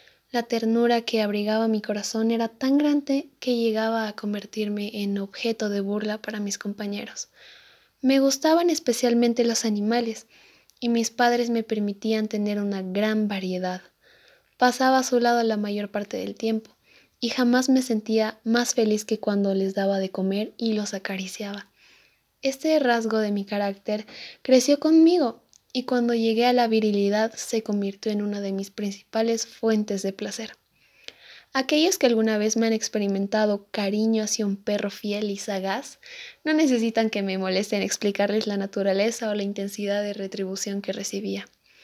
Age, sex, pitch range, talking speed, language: 10-29, female, 200-235 Hz, 160 wpm, Spanish